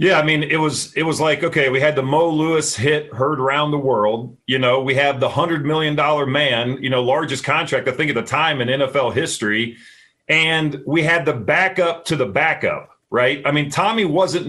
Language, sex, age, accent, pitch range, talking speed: English, male, 40-59, American, 140-180 Hz, 220 wpm